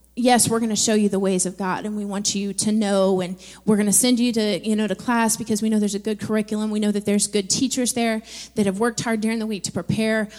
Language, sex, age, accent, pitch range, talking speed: English, female, 30-49, American, 195-225 Hz, 290 wpm